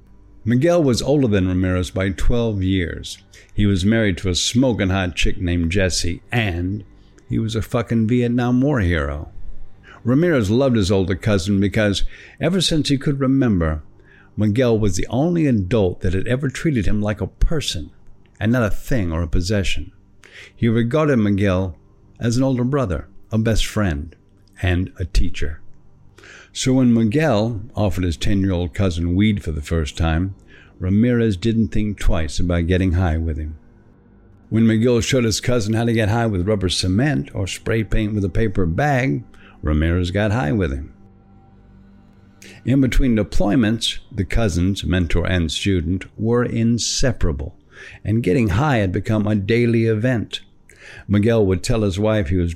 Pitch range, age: 95-115 Hz, 60-79